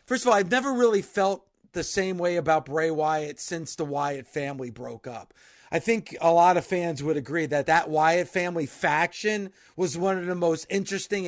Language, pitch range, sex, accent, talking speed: English, 155-195 Hz, male, American, 200 wpm